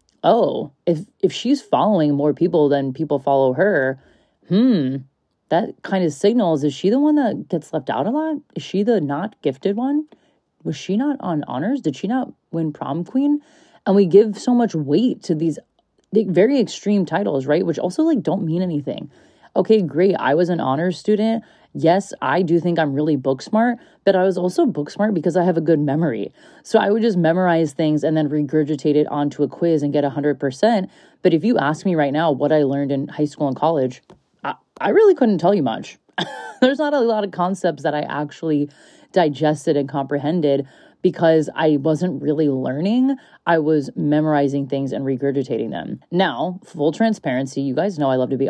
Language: English